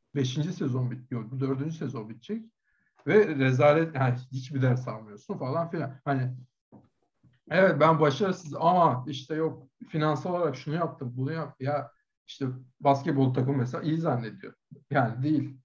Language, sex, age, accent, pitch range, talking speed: Turkish, male, 60-79, native, 130-160 Hz, 135 wpm